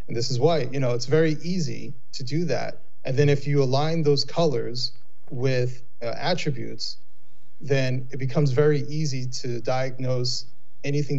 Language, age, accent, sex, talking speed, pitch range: English, 30-49, American, male, 160 wpm, 130-155 Hz